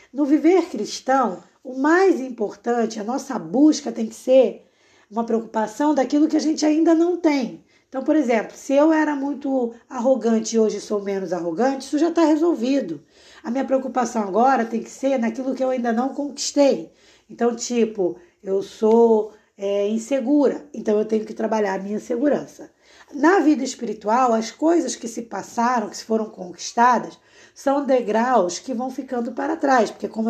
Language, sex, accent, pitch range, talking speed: Portuguese, female, Brazilian, 220-275 Hz, 170 wpm